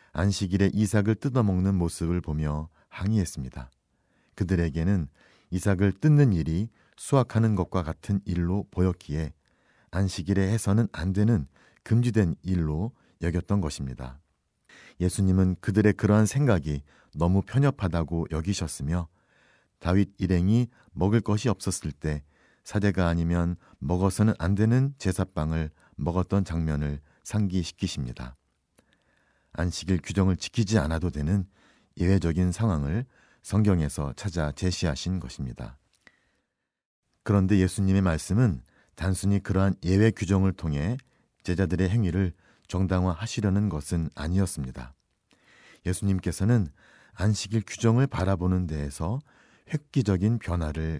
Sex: male